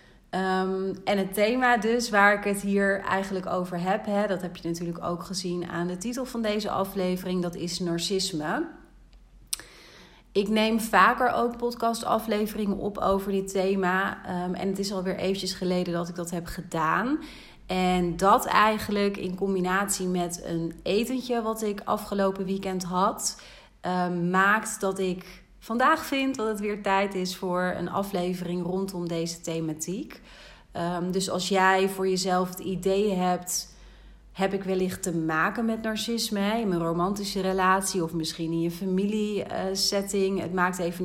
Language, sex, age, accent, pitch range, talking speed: Dutch, female, 30-49, Dutch, 180-205 Hz, 160 wpm